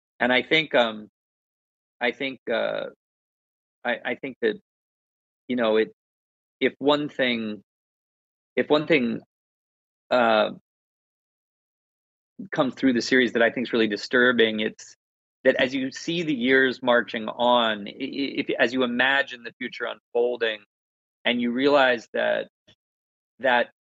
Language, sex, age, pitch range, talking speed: English, male, 40-59, 115-135 Hz, 135 wpm